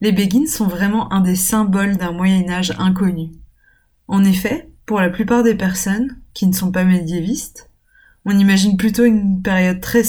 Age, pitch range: 20-39, 175-215 Hz